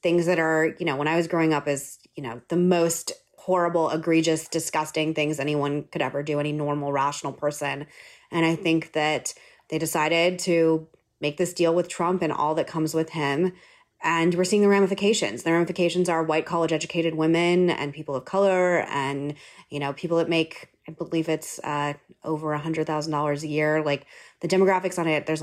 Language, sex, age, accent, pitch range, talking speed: English, female, 30-49, American, 150-185 Hz, 190 wpm